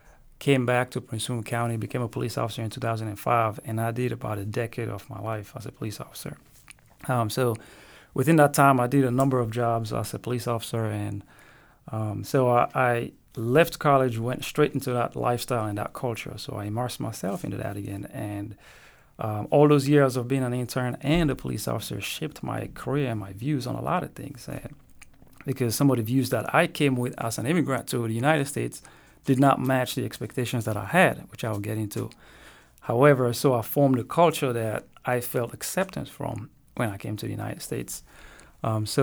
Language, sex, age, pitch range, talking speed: English, male, 30-49, 110-135 Hz, 210 wpm